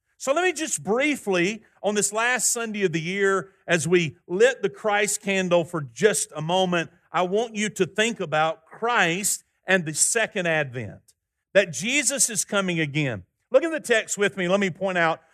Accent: American